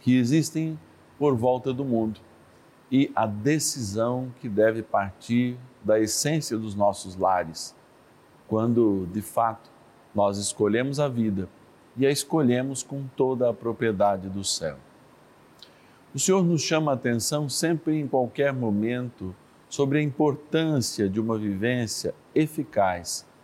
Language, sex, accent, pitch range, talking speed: Portuguese, male, Brazilian, 105-140 Hz, 130 wpm